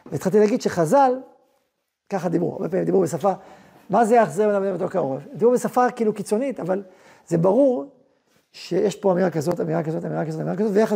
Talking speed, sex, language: 170 wpm, male, Hebrew